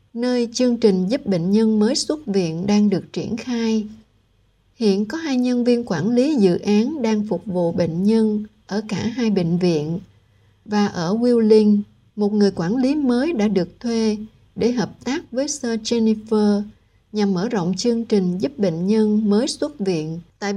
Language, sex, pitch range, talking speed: Vietnamese, female, 195-240 Hz, 180 wpm